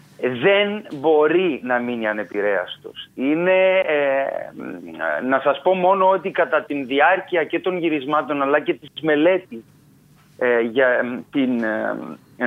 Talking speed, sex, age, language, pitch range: 125 wpm, male, 30-49, Greek, 140-190 Hz